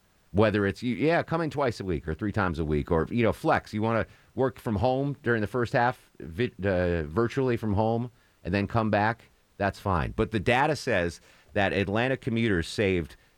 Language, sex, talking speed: English, male, 200 wpm